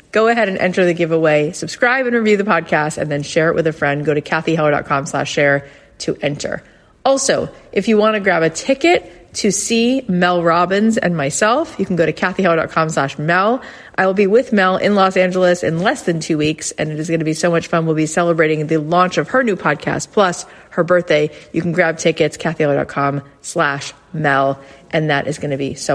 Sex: female